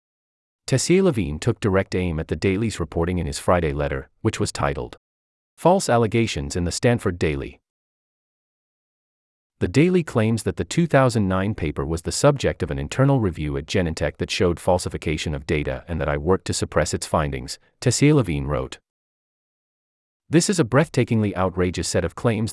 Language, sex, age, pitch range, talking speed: English, male, 30-49, 75-115 Hz, 160 wpm